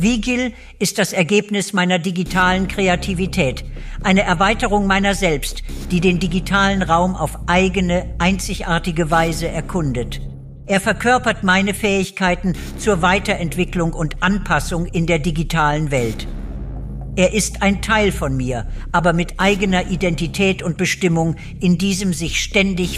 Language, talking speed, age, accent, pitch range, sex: German, 125 wpm, 60-79, German, 150-190 Hz, female